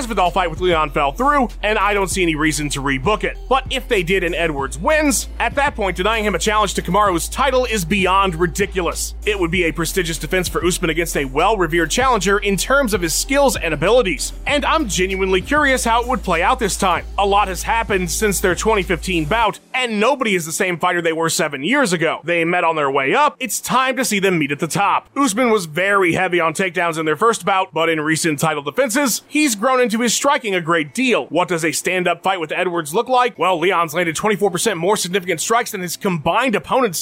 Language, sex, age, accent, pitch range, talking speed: English, male, 30-49, American, 170-235 Hz, 230 wpm